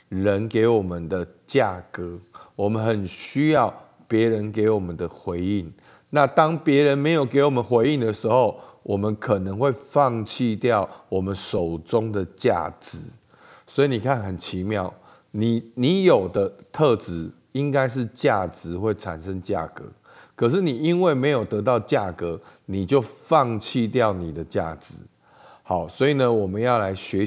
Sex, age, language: male, 50-69, Chinese